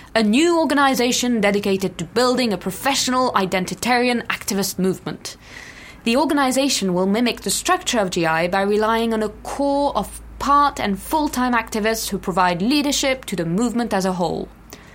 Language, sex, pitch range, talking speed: English, female, 190-245 Hz, 155 wpm